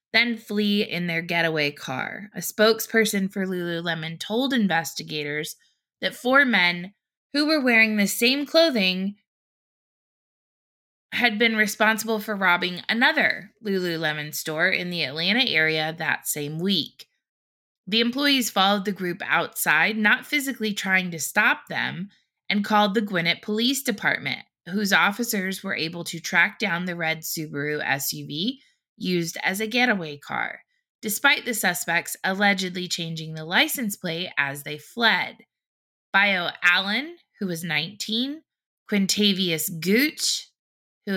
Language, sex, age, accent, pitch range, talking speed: English, female, 20-39, American, 170-225 Hz, 130 wpm